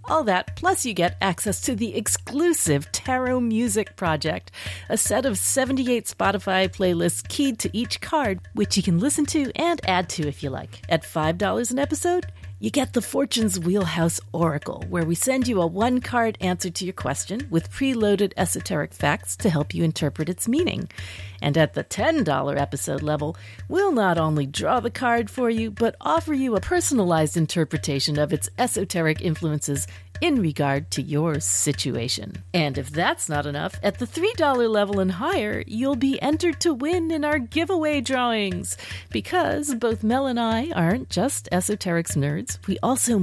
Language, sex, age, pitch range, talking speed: English, female, 50-69, 145-240 Hz, 170 wpm